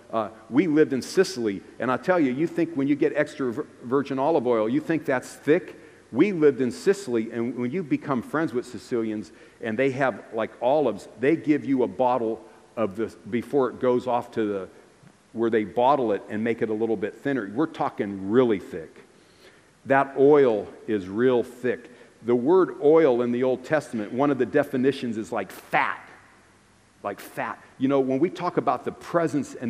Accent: American